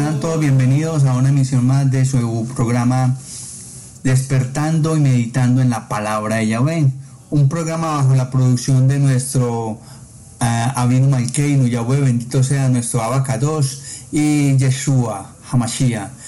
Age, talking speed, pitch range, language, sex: 50-69, 130 wpm, 120-140 Hz, Spanish, male